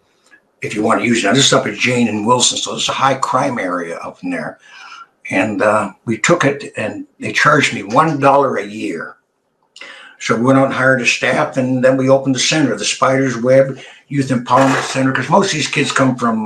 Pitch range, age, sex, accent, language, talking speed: 125-140 Hz, 60-79, male, American, English, 225 wpm